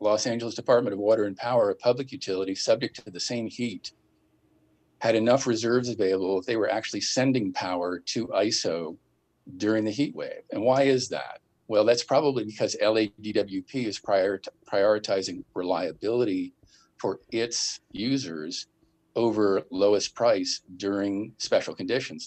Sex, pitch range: male, 100-140 Hz